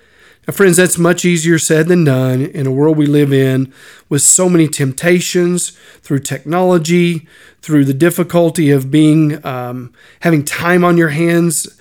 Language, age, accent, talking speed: English, 40-59, American, 160 wpm